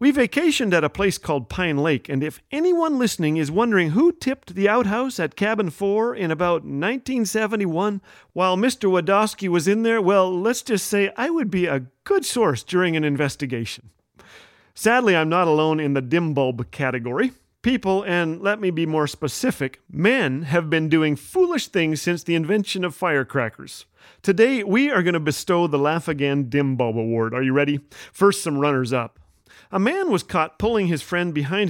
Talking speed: 180 wpm